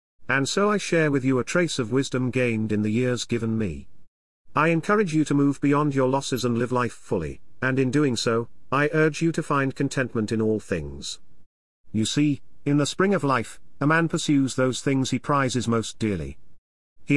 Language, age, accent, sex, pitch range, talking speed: English, 40-59, British, male, 110-145 Hz, 205 wpm